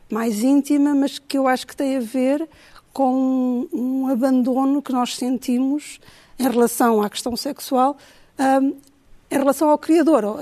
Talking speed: 160 wpm